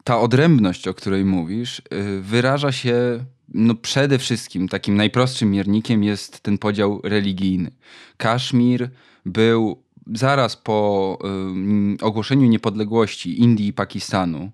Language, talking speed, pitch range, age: Polish, 105 wpm, 100-120 Hz, 20-39